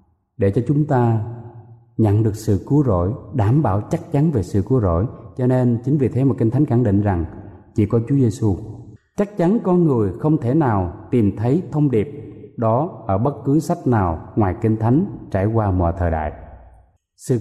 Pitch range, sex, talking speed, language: 105-140 Hz, male, 200 wpm, Vietnamese